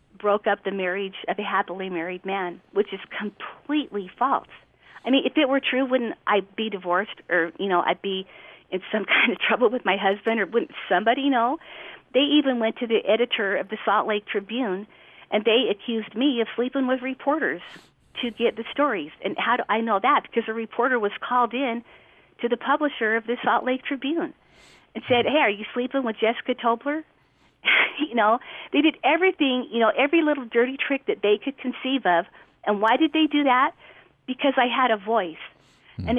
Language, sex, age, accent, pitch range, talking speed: English, female, 50-69, American, 210-260 Hz, 200 wpm